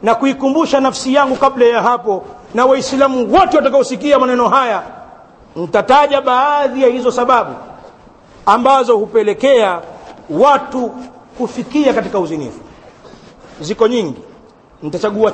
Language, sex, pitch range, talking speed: Swahili, male, 230-275 Hz, 105 wpm